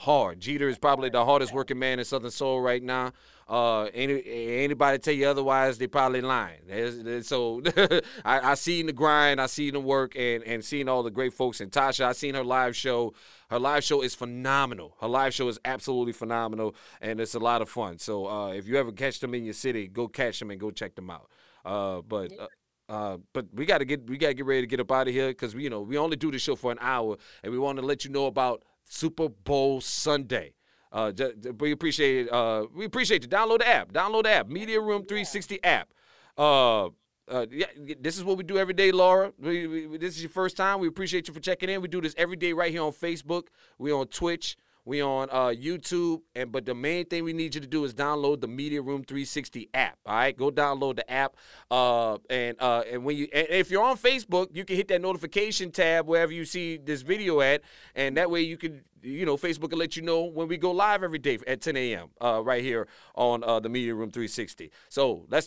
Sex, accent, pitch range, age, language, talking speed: male, American, 125-165 Hz, 30-49, English, 235 wpm